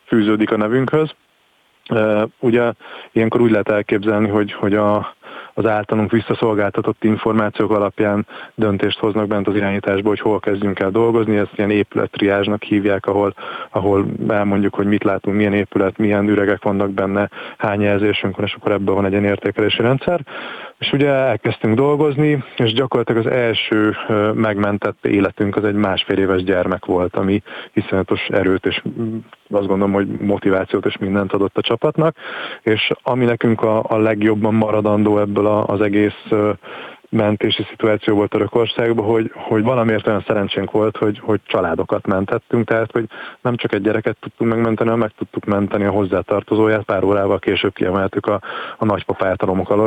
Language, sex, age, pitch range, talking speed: Hungarian, male, 30-49, 100-110 Hz, 155 wpm